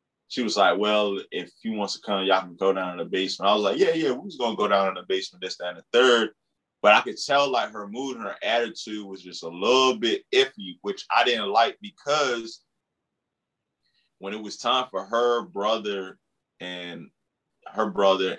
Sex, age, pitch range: male, 20-39, 95-120 Hz